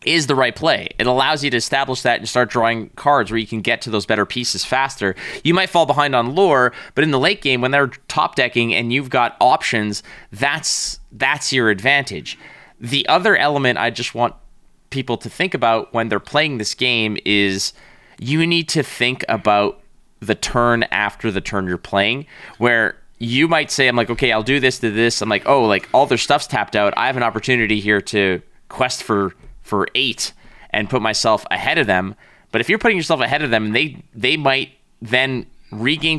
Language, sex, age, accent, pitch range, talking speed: English, male, 20-39, American, 110-135 Hz, 205 wpm